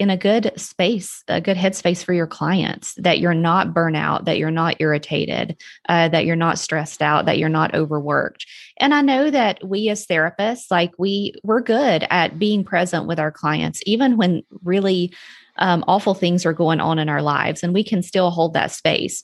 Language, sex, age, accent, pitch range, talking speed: English, female, 30-49, American, 160-200 Hz, 200 wpm